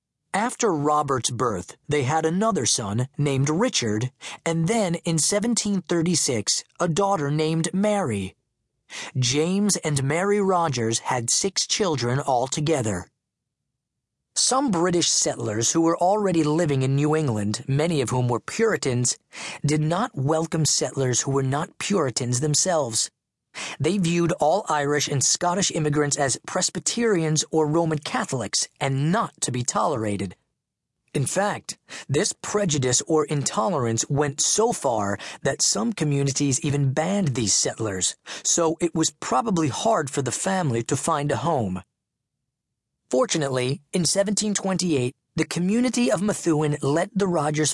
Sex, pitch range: male, 135-175 Hz